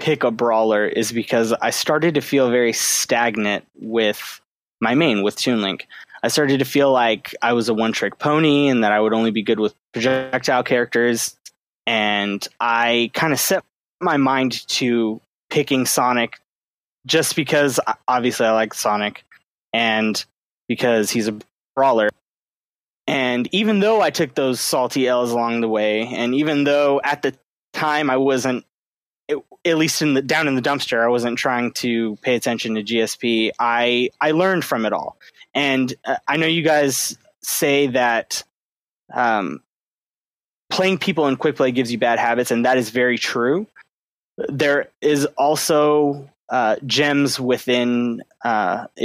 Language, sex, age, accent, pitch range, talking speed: English, male, 20-39, American, 115-145 Hz, 160 wpm